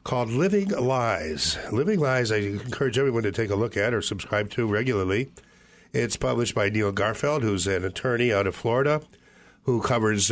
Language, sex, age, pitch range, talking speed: English, male, 50-69, 105-130 Hz, 175 wpm